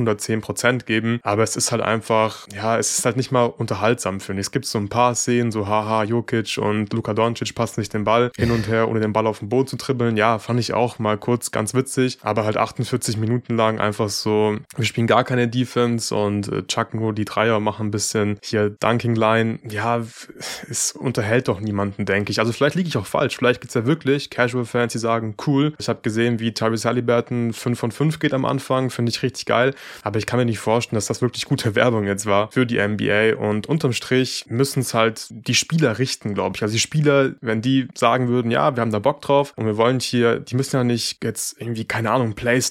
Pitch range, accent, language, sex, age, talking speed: 110-125 Hz, German, German, male, 20-39, 230 wpm